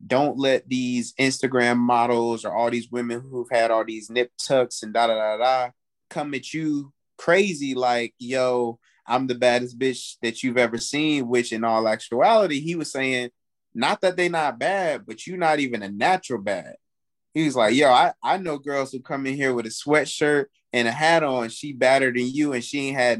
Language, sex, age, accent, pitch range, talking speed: English, male, 20-39, American, 120-150 Hz, 205 wpm